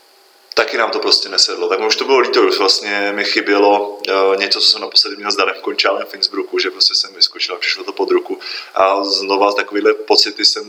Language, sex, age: Czech, male, 30-49